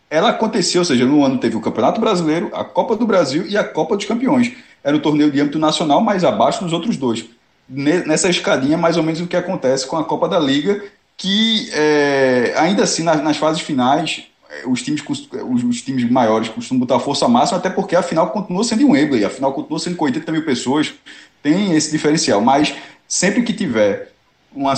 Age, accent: 20-39, Brazilian